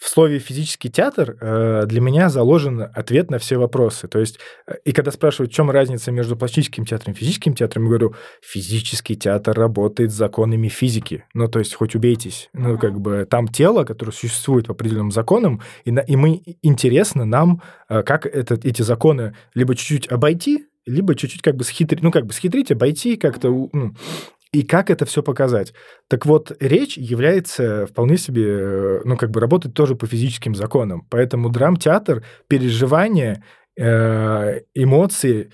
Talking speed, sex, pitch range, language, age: 160 wpm, male, 110-145 Hz, Russian, 20-39